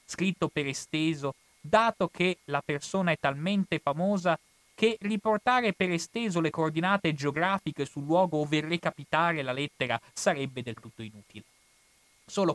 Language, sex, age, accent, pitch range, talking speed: Italian, male, 30-49, native, 125-165 Hz, 135 wpm